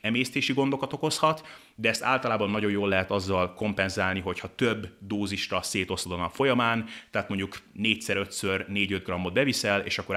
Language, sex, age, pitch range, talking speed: Hungarian, male, 30-49, 95-115 Hz, 155 wpm